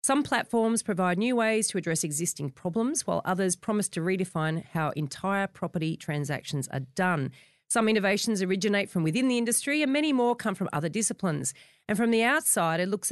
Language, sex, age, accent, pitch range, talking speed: English, female, 40-59, Australian, 160-235 Hz, 185 wpm